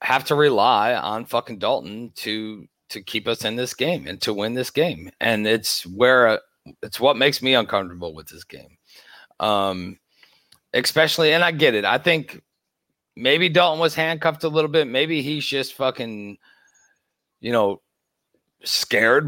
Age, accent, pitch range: 30-49, American, 110-150 Hz